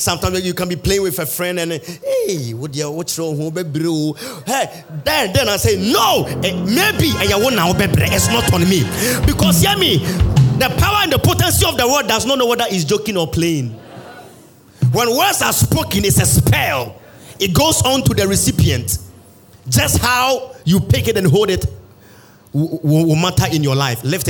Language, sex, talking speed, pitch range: English, male, 170 wpm, 125-195 Hz